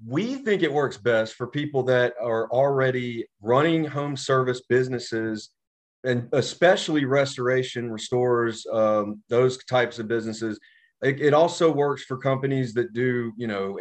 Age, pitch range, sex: 30-49, 110-130 Hz, male